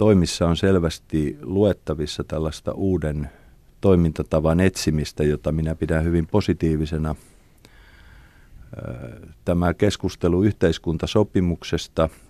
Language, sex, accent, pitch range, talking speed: Finnish, male, native, 80-90 Hz, 80 wpm